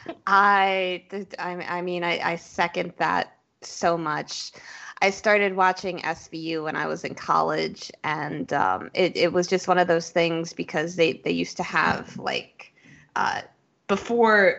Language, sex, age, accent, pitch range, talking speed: English, female, 20-39, American, 170-190 Hz, 150 wpm